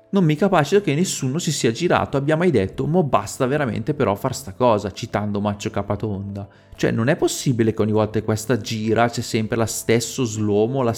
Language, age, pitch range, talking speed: Italian, 30-49, 105-135 Hz, 200 wpm